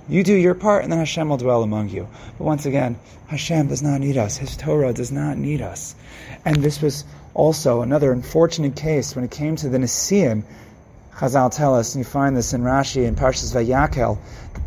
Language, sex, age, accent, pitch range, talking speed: English, male, 30-49, American, 120-150 Hz, 210 wpm